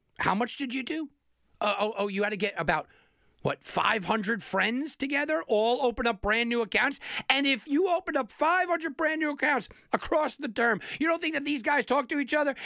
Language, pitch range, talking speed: English, 200-300 Hz, 215 wpm